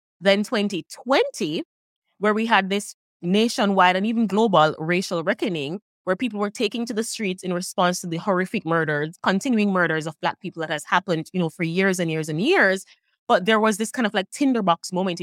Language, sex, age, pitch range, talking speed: English, female, 20-39, 180-235 Hz, 195 wpm